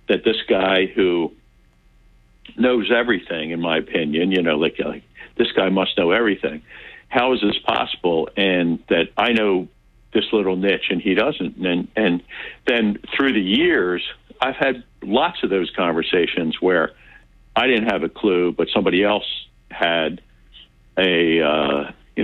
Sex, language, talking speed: male, English, 155 wpm